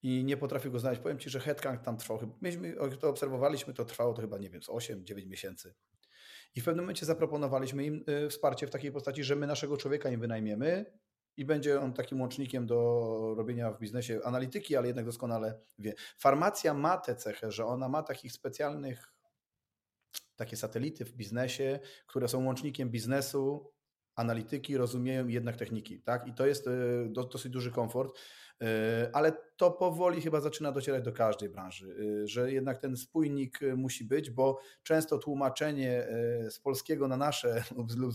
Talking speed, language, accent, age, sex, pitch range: 165 wpm, Polish, native, 40-59, male, 120-145 Hz